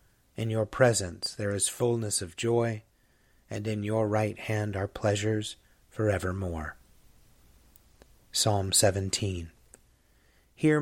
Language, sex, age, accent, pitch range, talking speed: English, male, 30-49, American, 105-130 Hz, 110 wpm